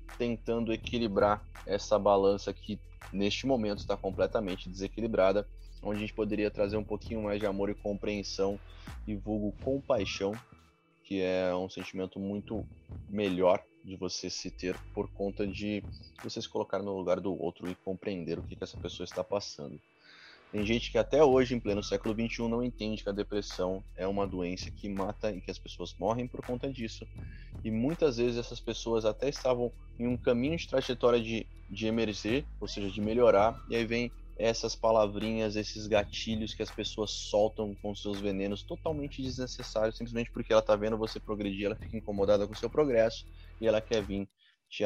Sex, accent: male, Brazilian